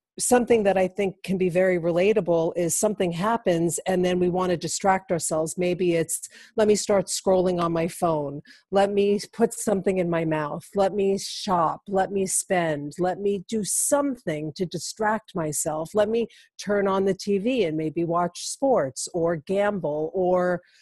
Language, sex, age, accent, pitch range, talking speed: English, female, 40-59, American, 175-215 Hz, 175 wpm